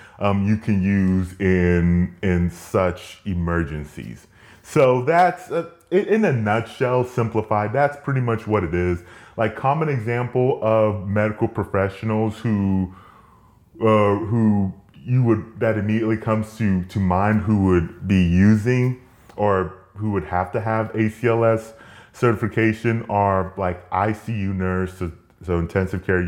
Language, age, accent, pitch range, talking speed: English, 30-49, American, 95-120 Hz, 130 wpm